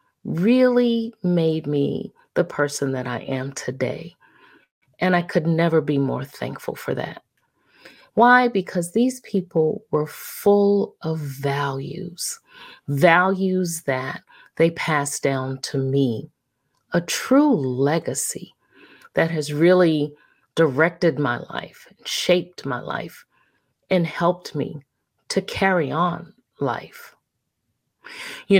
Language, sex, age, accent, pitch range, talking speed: English, female, 40-59, American, 140-190 Hz, 110 wpm